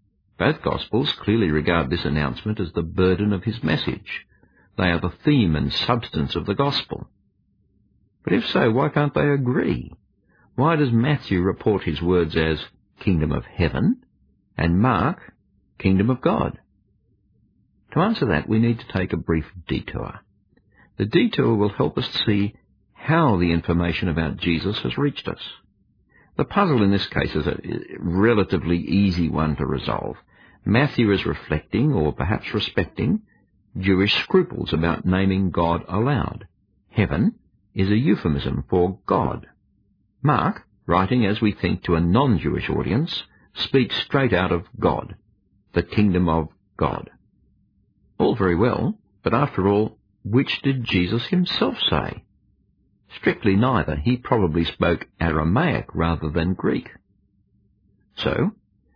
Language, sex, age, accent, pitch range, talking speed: English, male, 50-69, Australian, 85-110 Hz, 140 wpm